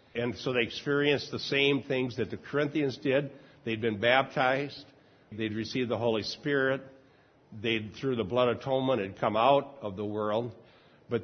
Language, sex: English, male